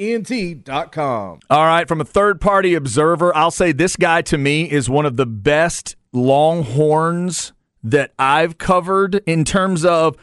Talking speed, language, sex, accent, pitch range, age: 140 wpm, English, male, American, 135-180 Hz, 40-59